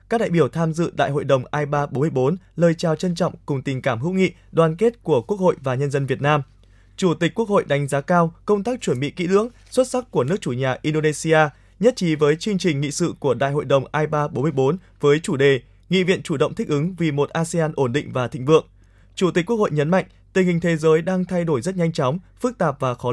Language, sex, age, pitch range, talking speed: Vietnamese, male, 20-39, 145-180 Hz, 250 wpm